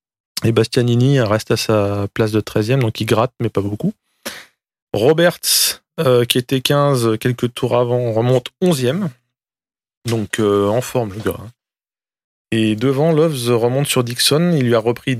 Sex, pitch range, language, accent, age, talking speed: male, 110-130 Hz, French, French, 20-39, 155 wpm